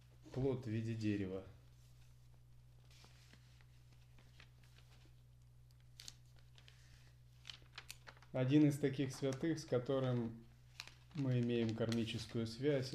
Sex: male